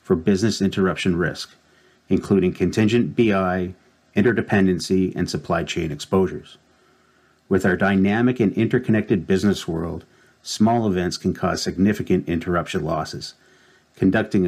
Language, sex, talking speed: English, male, 110 wpm